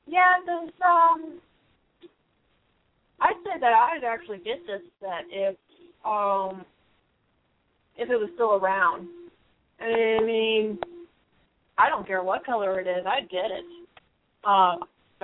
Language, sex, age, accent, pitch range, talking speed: English, female, 30-49, American, 215-345 Hz, 120 wpm